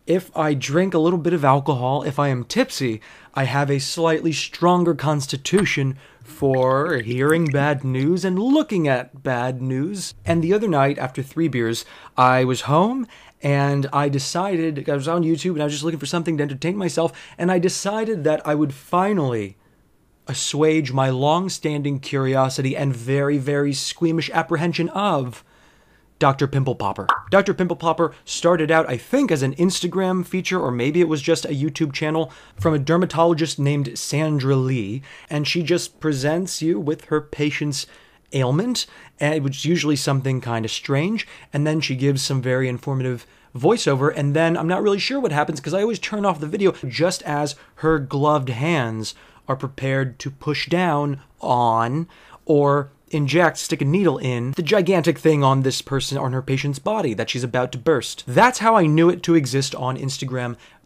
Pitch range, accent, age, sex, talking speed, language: 135-170 Hz, American, 20-39, male, 175 wpm, English